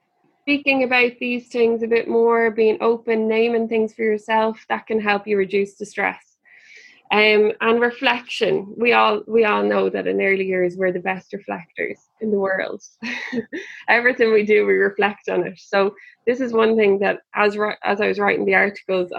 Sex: female